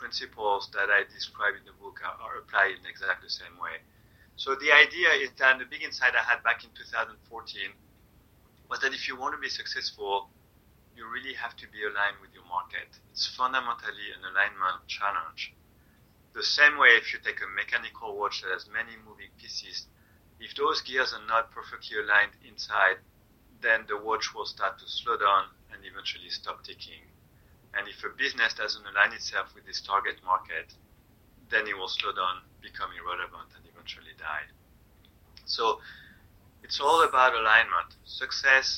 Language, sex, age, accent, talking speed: English, male, 30-49, French, 170 wpm